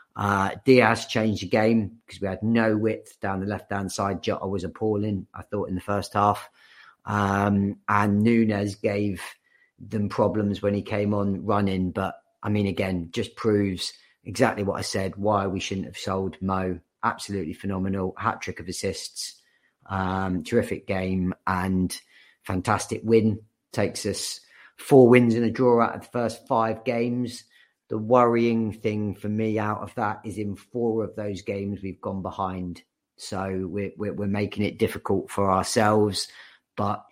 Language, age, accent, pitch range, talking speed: English, 30-49, British, 95-110 Hz, 165 wpm